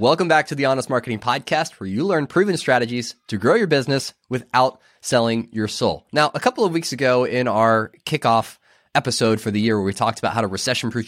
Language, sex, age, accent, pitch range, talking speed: English, male, 20-39, American, 110-140 Hz, 215 wpm